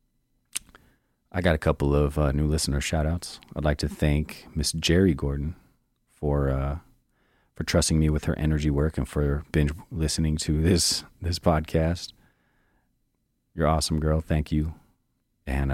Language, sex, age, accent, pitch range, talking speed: English, male, 40-59, American, 65-80 Hz, 155 wpm